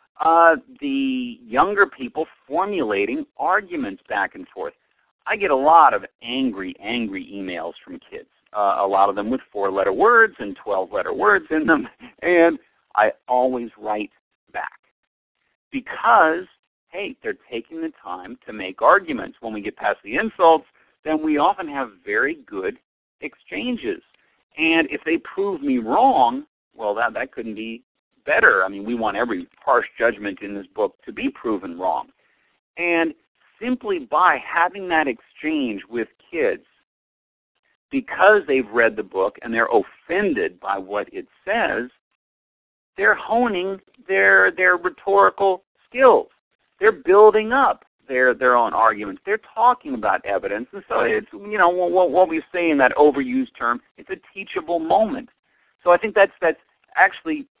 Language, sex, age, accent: English, male, 50-69, American